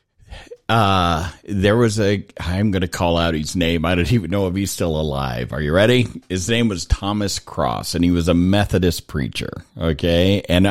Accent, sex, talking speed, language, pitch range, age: American, male, 195 wpm, English, 85-110 Hz, 50-69